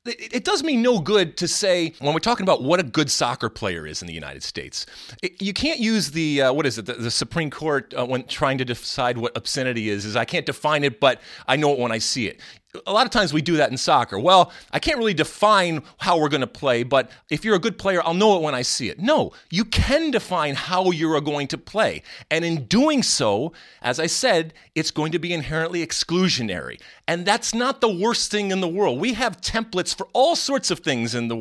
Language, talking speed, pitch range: English, 245 wpm, 135-200 Hz